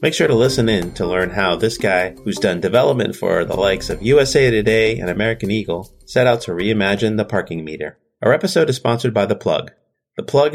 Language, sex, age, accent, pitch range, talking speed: English, male, 30-49, American, 95-125 Hz, 215 wpm